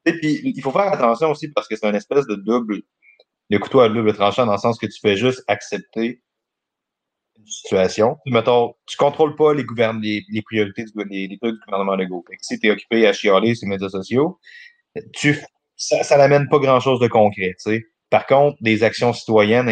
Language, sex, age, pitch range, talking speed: French, male, 30-49, 100-130 Hz, 205 wpm